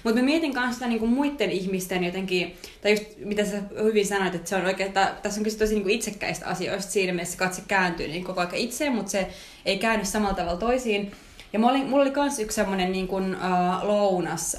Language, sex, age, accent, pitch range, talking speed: Finnish, female, 20-39, native, 180-215 Hz, 200 wpm